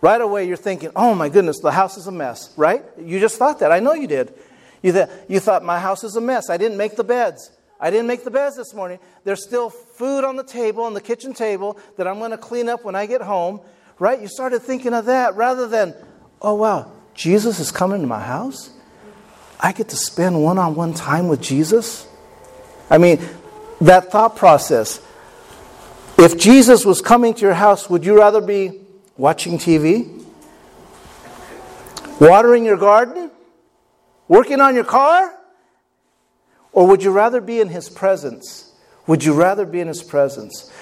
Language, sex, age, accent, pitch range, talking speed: English, male, 40-59, American, 175-235 Hz, 185 wpm